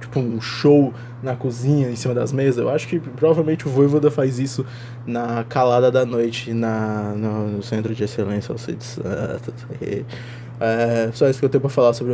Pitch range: 120-170 Hz